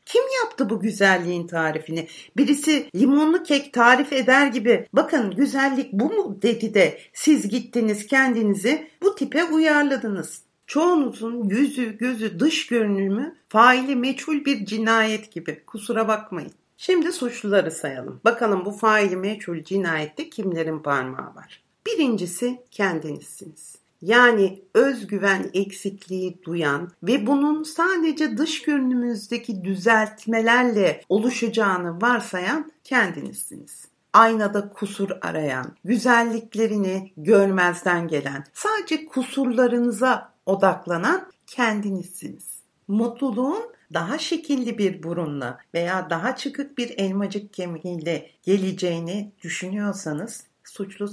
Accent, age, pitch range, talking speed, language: native, 60-79, 190-270 Hz, 100 wpm, Turkish